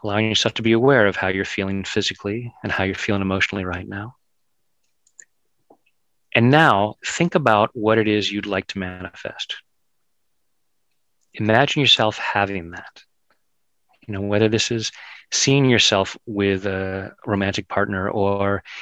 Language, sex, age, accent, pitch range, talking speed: English, male, 40-59, American, 100-125 Hz, 140 wpm